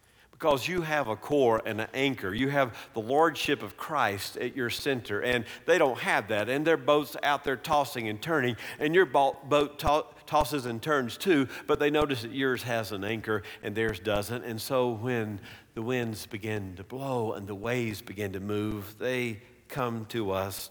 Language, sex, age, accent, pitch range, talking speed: English, male, 50-69, American, 120-155 Hz, 190 wpm